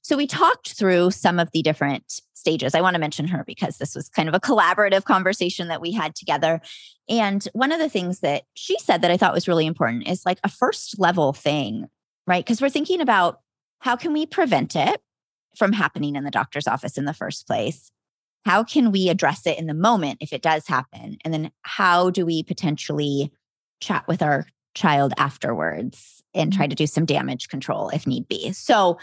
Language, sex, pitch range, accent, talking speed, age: English, female, 155-220 Hz, American, 205 wpm, 20-39